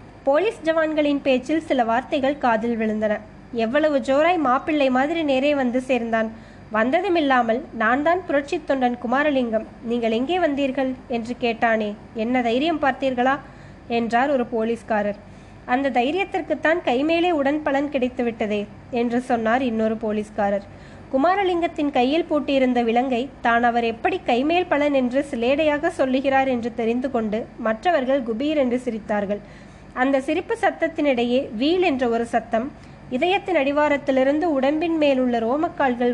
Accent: native